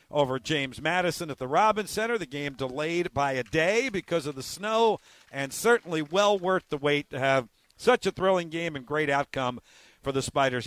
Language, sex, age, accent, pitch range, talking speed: English, male, 50-69, American, 135-175 Hz, 195 wpm